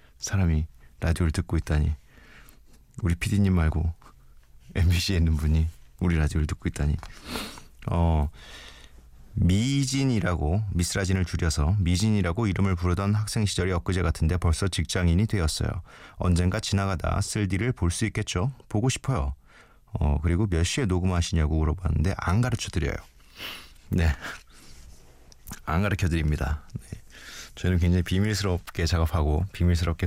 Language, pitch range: Korean, 75-100 Hz